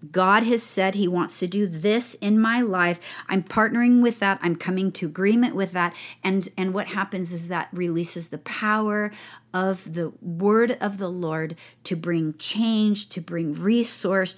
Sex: female